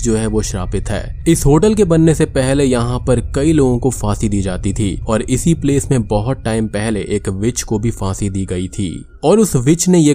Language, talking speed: Hindi, 235 wpm